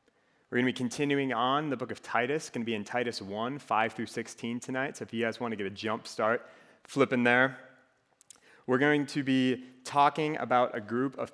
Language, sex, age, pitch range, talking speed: English, male, 30-49, 105-130 Hz, 220 wpm